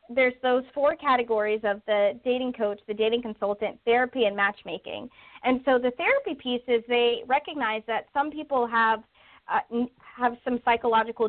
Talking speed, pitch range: 160 wpm, 205-250 Hz